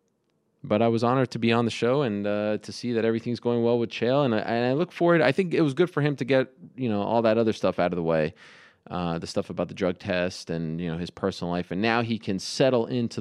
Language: English